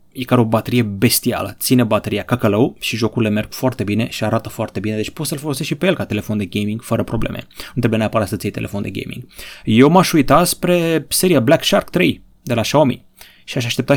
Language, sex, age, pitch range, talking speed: Romanian, male, 30-49, 110-145 Hz, 220 wpm